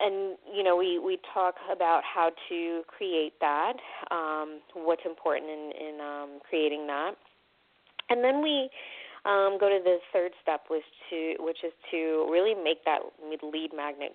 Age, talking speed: 30-49, 155 wpm